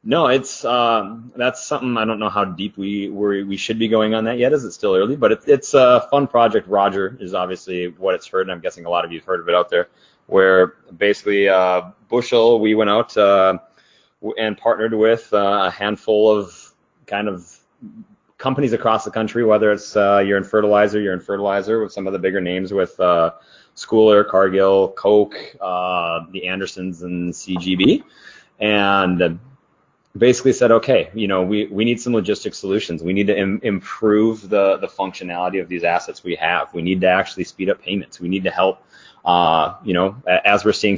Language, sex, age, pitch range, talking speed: English, male, 30-49, 95-115 Hz, 195 wpm